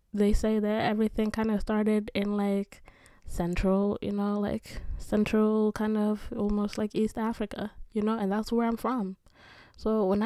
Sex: female